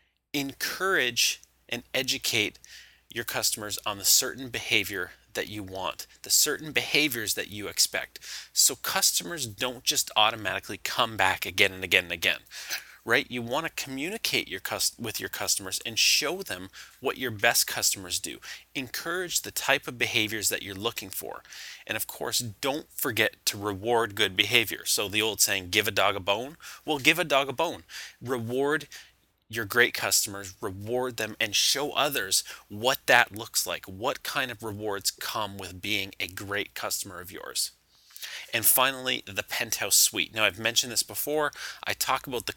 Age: 30-49